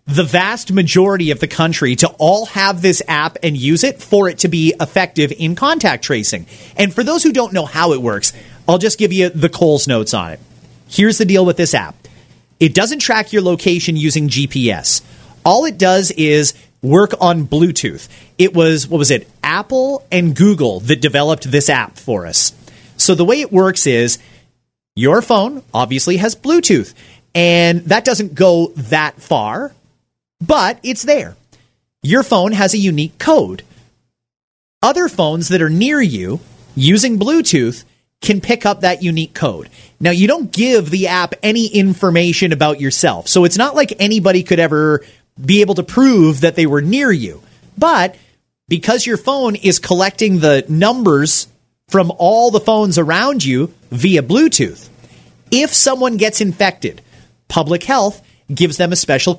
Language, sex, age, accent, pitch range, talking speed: English, male, 30-49, American, 155-210 Hz, 170 wpm